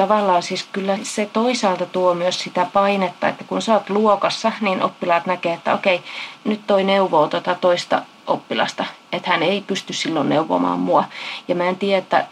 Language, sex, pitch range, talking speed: Finnish, female, 170-200 Hz, 175 wpm